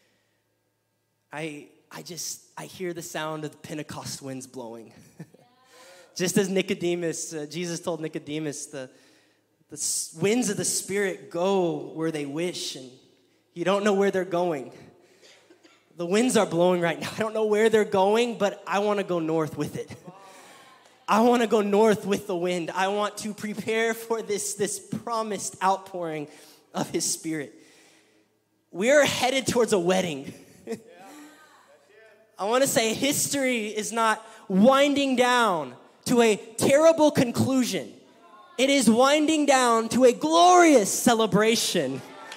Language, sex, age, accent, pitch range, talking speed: English, male, 20-39, American, 170-255 Hz, 145 wpm